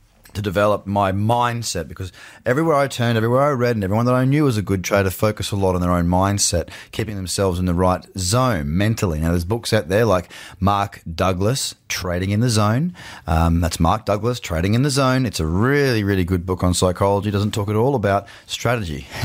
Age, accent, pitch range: 30-49, Australian, 95-120 Hz